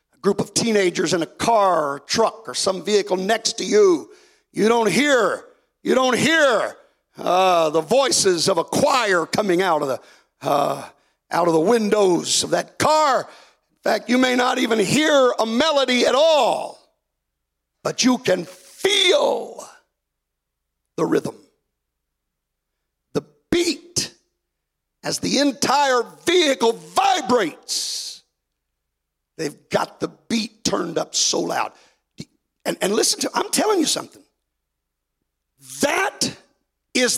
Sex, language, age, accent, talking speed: male, English, 50-69, American, 130 wpm